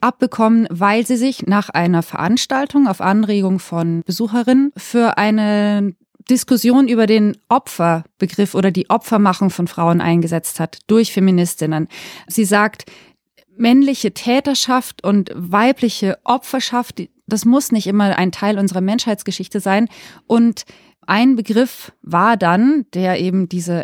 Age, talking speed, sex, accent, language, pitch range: 30-49, 125 wpm, female, German, German, 190-240 Hz